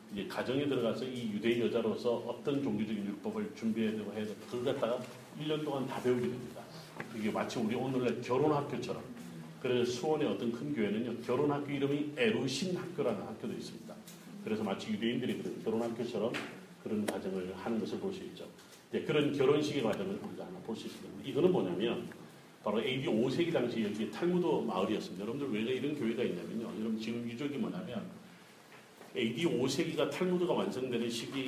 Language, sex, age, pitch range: Korean, male, 40-59, 115-170 Hz